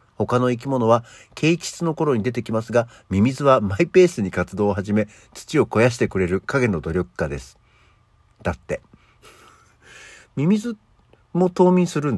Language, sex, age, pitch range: Japanese, male, 50-69, 95-155 Hz